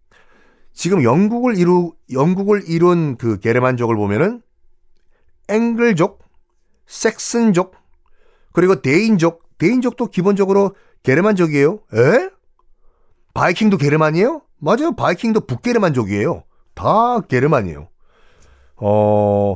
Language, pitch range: Korean, 125-200 Hz